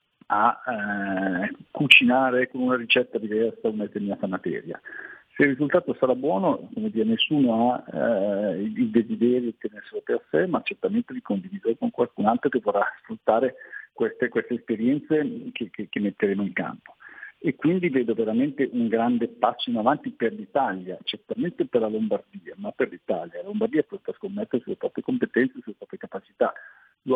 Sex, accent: male, native